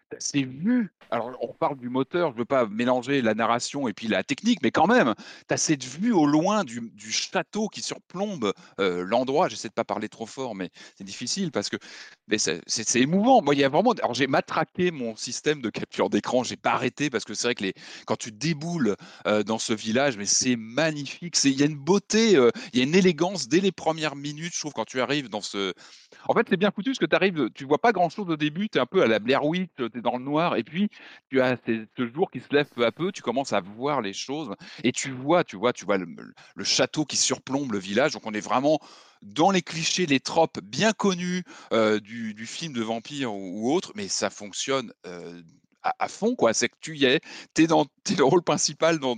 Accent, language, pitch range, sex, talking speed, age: French, French, 120-175 Hz, male, 250 wpm, 30-49